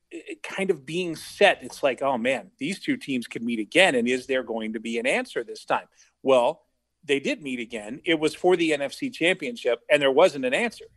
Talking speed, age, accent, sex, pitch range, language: 220 wpm, 40-59, American, male, 135-185 Hz, English